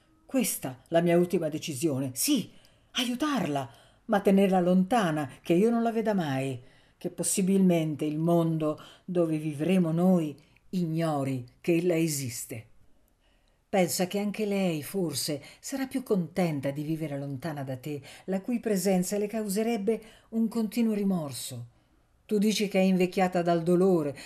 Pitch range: 145-195 Hz